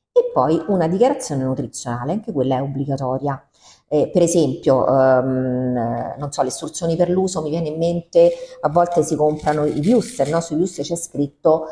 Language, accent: Italian, native